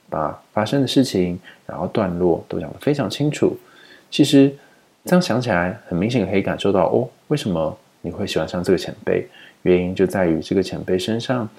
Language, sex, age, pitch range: Chinese, male, 20-39, 90-115 Hz